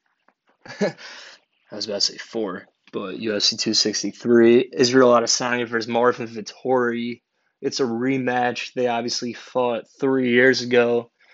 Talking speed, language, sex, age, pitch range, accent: 120 wpm, English, male, 20-39, 115-130 Hz, American